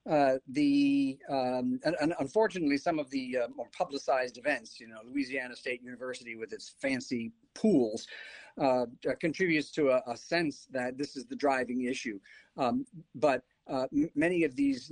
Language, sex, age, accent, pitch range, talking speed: English, male, 50-69, American, 125-185 Hz, 165 wpm